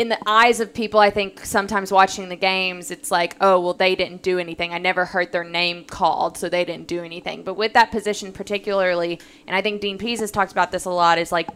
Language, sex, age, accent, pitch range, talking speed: English, female, 20-39, American, 180-215 Hz, 250 wpm